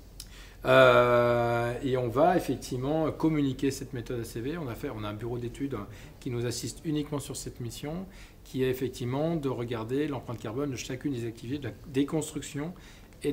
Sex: male